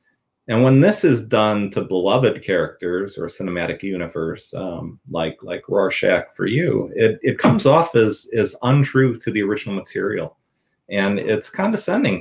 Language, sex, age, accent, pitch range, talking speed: English, male, 30-49, American, 110-155 Hz, 155 wpm